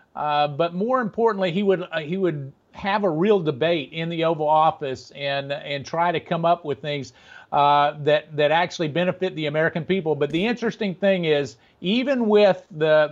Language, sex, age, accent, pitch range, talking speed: English, male, 40-59, American, 150-185 Hz, 190 wpm